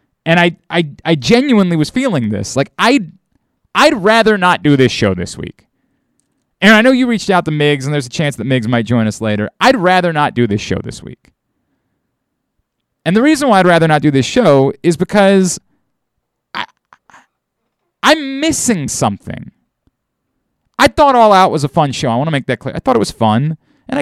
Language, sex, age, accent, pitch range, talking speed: English, male, 30-49, American, 130-195 Hz, 200 wpm